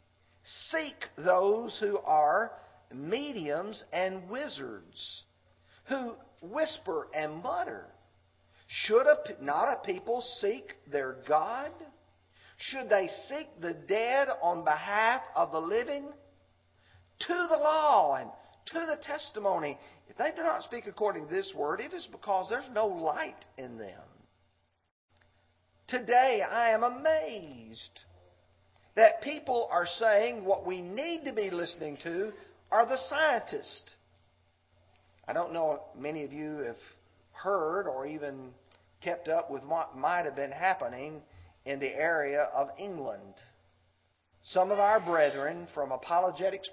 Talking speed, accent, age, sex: 130 wpm, American, 50-69, male